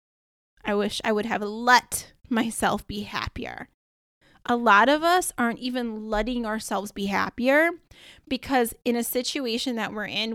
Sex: female